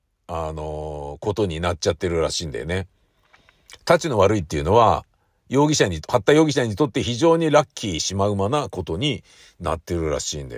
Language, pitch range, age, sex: Japanese, 95-140 Hz, 50-69, male